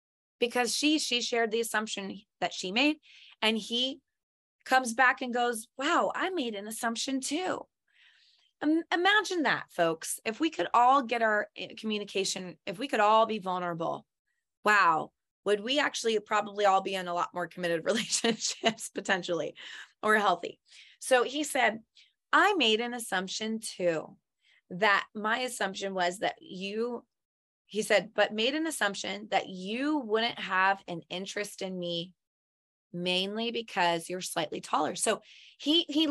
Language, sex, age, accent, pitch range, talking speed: English, female, 20-39, American, 195-260 Hz, 150 wpm